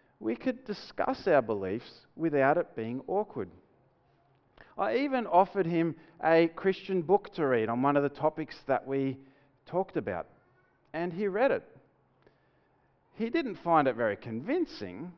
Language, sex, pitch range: English, male, 135-205 Hz